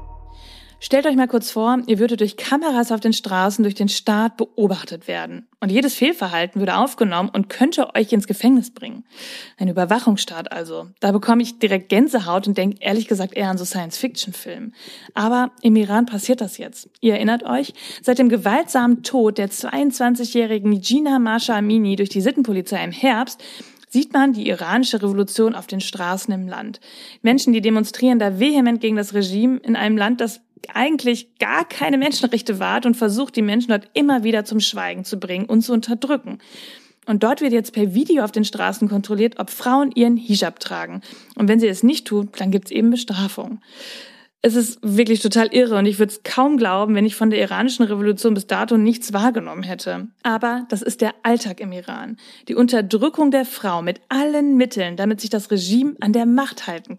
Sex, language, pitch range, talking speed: female, German, 205-250 Hz, 190 wpm